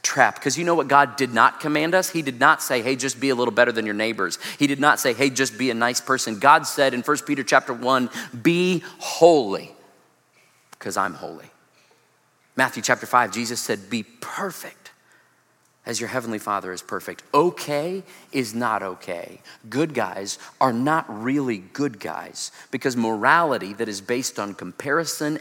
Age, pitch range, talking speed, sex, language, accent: 40-59, 105-145 Hz, 180 wpm, male, English, American